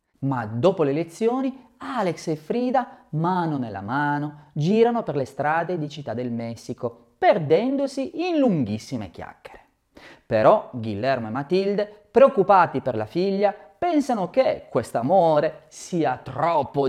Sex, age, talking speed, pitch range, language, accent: male, 30-49, 125 wpm, 125-205 Hz, Italian, native